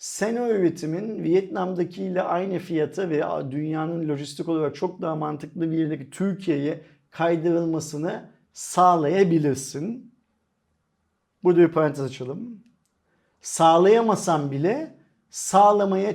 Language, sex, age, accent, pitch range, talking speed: Turkish, male, 50-69, native, 140-175 Hz, 90 wpm